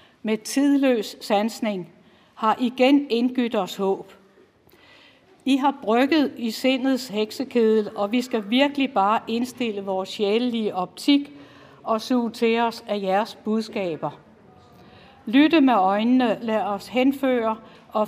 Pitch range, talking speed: 205-250 Hz, 125 wpm